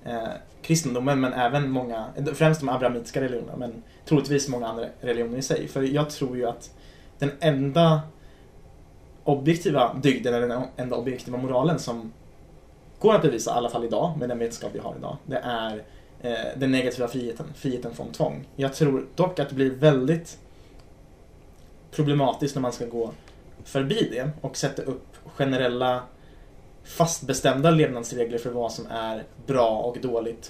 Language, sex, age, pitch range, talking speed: Swedish, male, 20-39, 120-145 Hz, 155 wpm